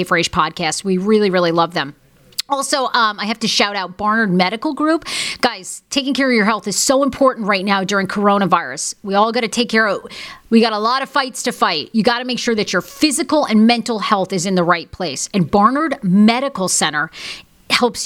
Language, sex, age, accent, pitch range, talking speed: English, female, 40-59, American, 190-260 Hz, 225 wpm